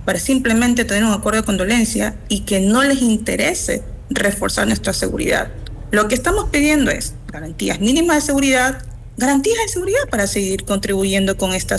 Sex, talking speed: female, 165 wpm